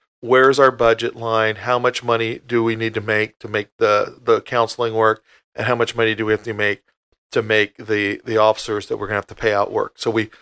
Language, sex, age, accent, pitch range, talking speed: English, male, 40-59, American, 115-135 Hz, 255 wpm